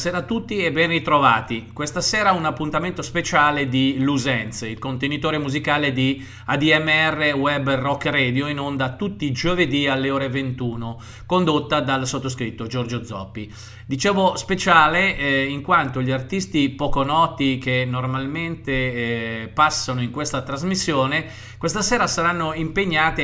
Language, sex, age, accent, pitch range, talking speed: Italian, male, 40-59, native, 125-160 Hz, 140 wpm